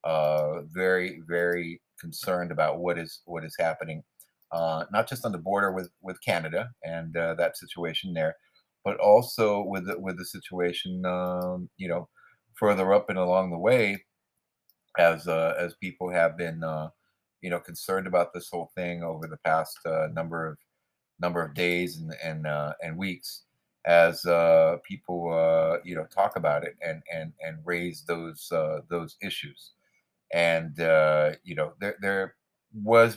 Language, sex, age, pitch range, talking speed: English, male, 30-49, 85-95 Hz, 165 wpm